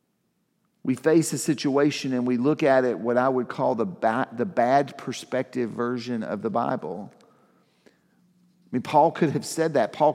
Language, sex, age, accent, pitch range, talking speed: English, male, 50-69, American, 130-170 Hz, 170 wpm